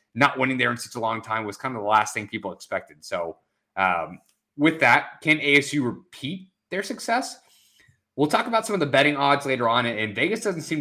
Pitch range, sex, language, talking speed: 105-135 Hz, male, English, 215 wpm